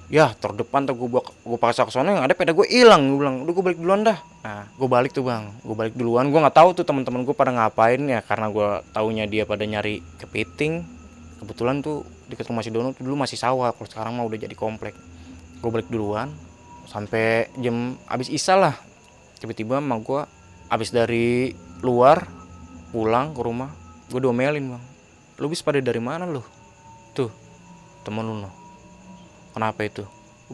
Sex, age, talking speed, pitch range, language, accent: male, 20-39, 175 wpm, 110-155 Hz, Indonesian, native